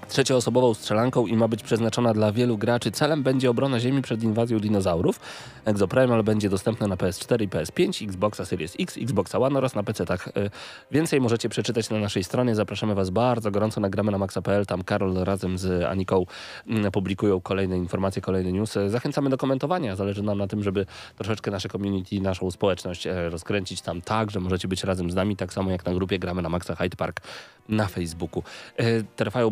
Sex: male